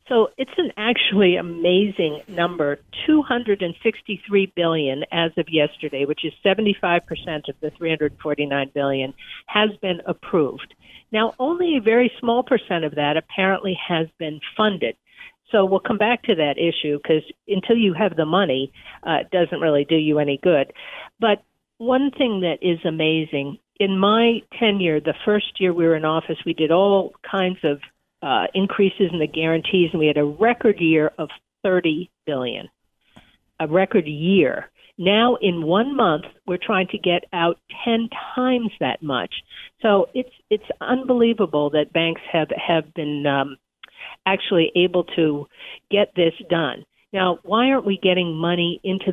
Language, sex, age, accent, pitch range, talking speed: English, female, 50-69, American, 160-210 Hz, 170 wpm